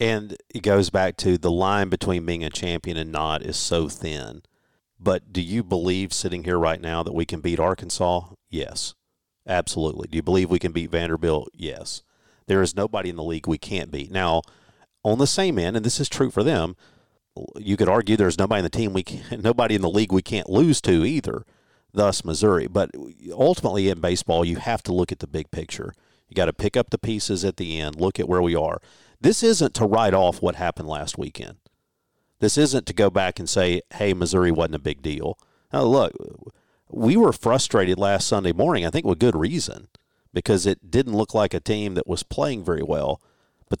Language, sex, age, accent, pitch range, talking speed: English, male, 40-59, American, 85-110 Hz, 210 wpm